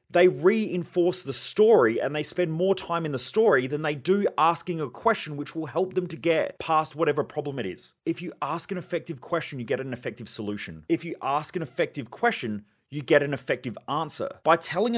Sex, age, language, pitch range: male, 30-49, English, 125-180 Hz